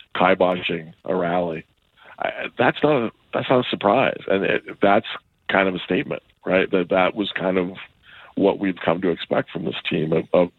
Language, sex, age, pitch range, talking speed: English, male, 40-59, 95-100 Hz, 195 wpm